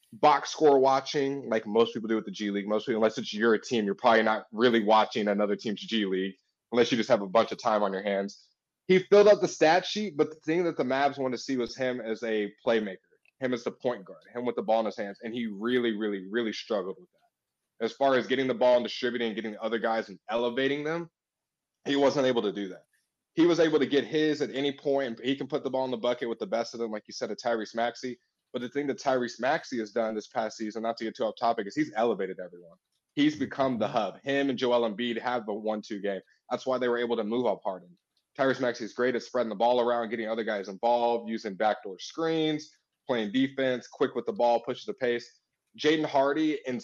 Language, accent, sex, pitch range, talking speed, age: English, American, male, 115-135 Hz, 250 wpm, 20-39